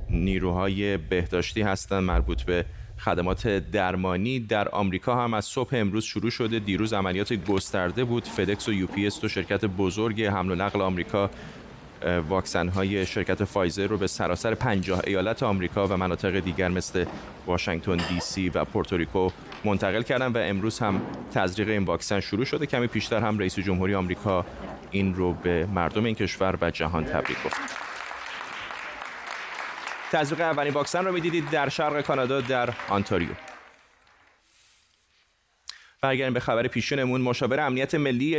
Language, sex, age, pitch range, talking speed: Persian, male, 30-49, 95-125 Hz, 140 wpm